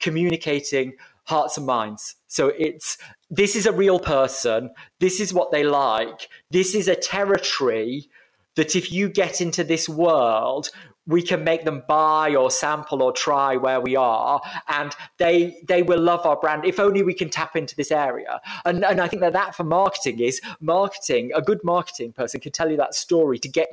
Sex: male